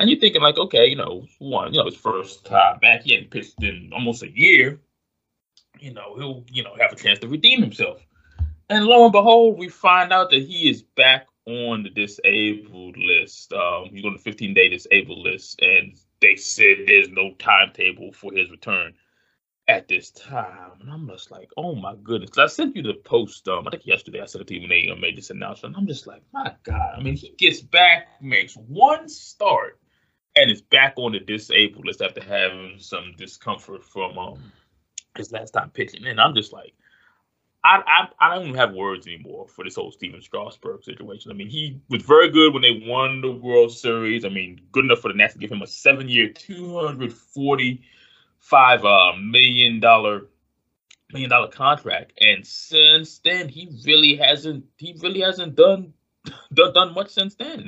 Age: 20-39